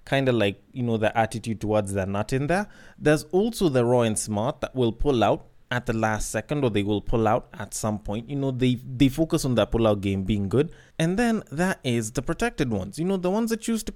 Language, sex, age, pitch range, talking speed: English, male, 20-39, 125-185 Hz, 255 wpm